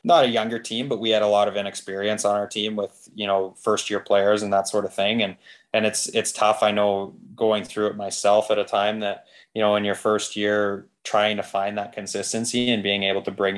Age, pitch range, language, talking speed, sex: 20-39, 95-105 Hz, English, 245 wpm, male